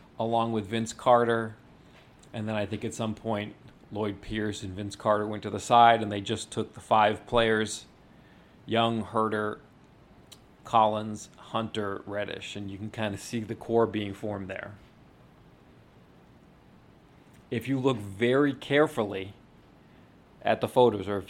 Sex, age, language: male, 40-59, English